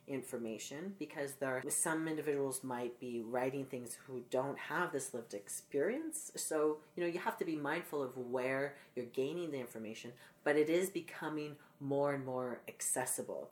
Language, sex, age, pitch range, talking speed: English, female, 30-49, 125-150 Hz, 170 wpm